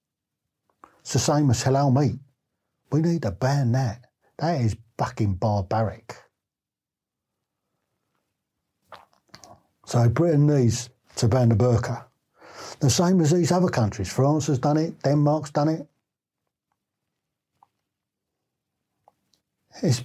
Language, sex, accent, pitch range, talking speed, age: English, male, British, 115-150 Hz, 110 wpm, 60-79